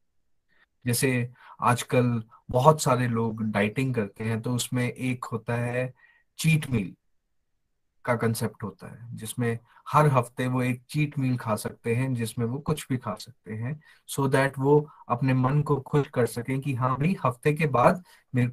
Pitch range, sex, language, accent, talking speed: 120-155 Hz, male, Hindi, native, 170 wpm